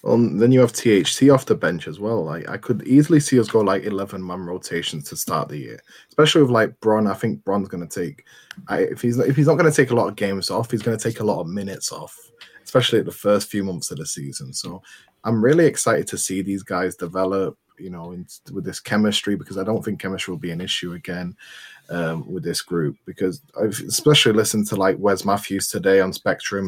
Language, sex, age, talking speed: English, male, 20-39, 235 wpm